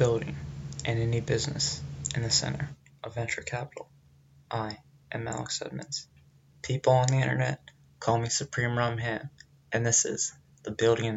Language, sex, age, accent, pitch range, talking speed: English, male, 20-39, American, 110-120 Hz, 150 wpm